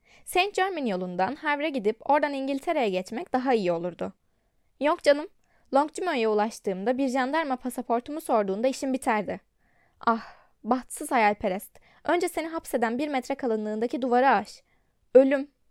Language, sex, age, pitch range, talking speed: Turkish, female, 10-29, 220-285 Hz, 125 wpm